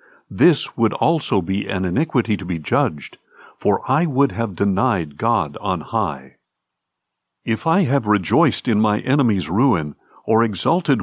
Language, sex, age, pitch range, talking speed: English, male, 60-79, 100-140 Hz, 145 wpm